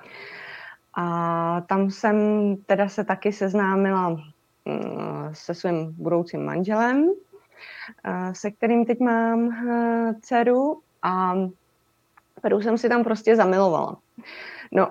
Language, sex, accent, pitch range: Czech, female, native, 180-225 Hz